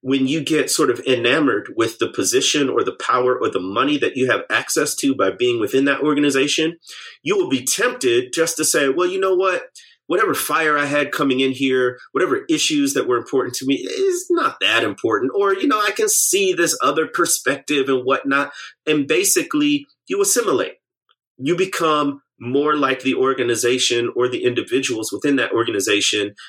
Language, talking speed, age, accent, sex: English, 185 wpm, 30-49, American, male